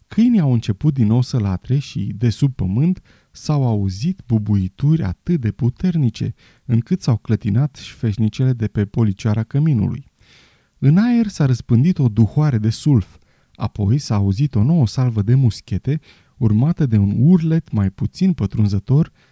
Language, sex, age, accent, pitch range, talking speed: Romanian, male, 20-39, native, 105-140 Hz, 150 wpm